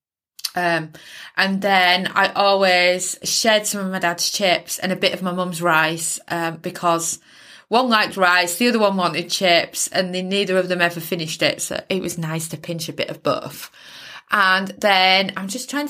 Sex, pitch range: female, 175-210 Hz